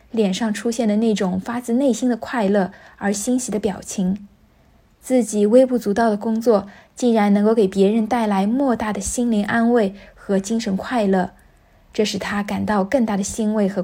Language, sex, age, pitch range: Chinese, female, 20-39, 200-230 Hz